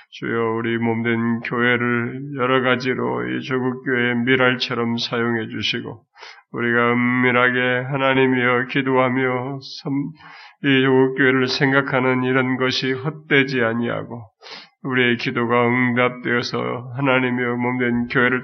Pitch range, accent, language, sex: 115-130 Hz, native, Korean, male